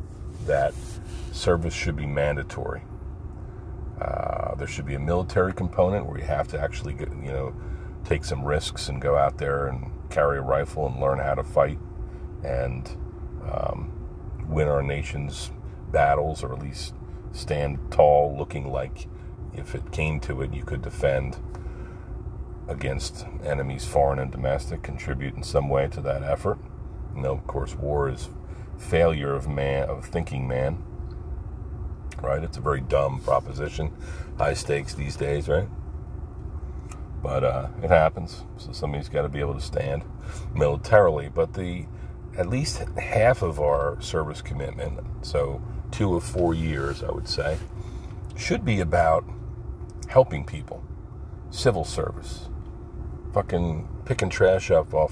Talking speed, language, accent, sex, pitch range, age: 145 wpm, English, American, male, 70-90 Hz, 40-59